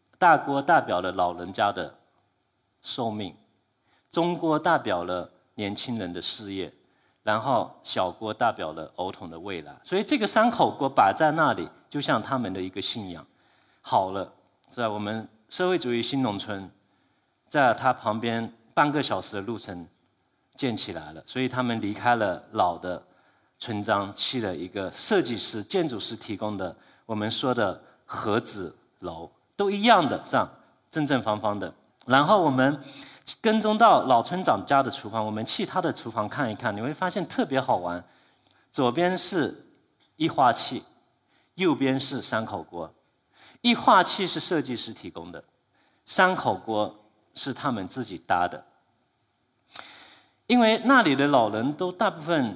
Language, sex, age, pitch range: Chinese, male, 50-69, 105-145 Hz